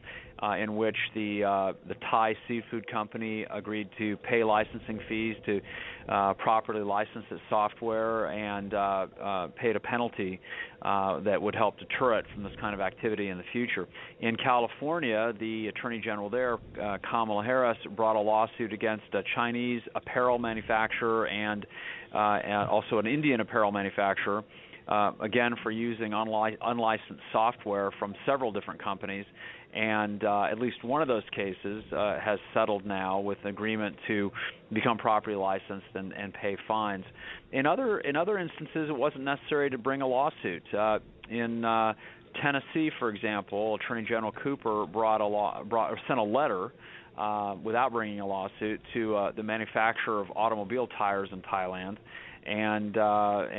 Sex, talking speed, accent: male, 160 wpm, American